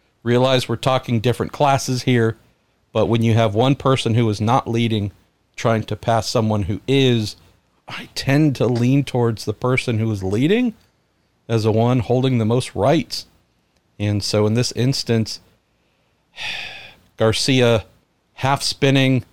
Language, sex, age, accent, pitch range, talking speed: English, male, 50-69, American, 110-130 Hz, 145 wpm